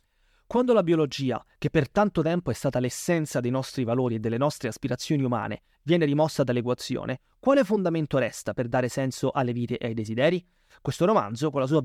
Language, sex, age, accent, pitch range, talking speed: Italian, male, 30-49, native, 130-170 Hz, 190 wpm